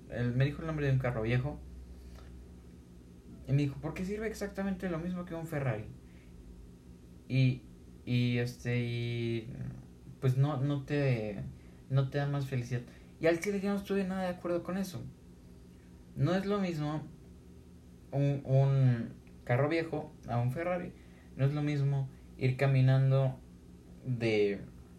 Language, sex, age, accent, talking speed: Spanish, male, 20-39, Mexican, 150 wpm